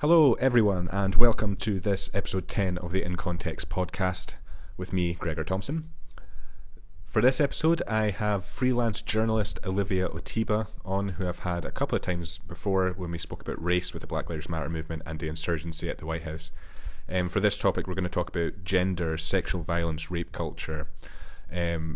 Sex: male